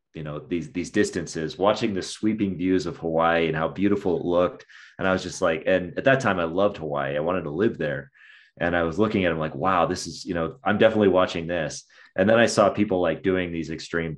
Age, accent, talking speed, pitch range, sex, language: 30-49, American, 245 wpm, 80-100 Hz, male, English